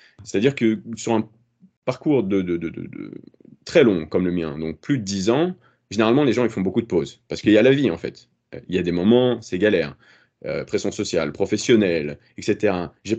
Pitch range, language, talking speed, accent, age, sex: 95-120 Hz, French, 230 wpm, French, 30-49, male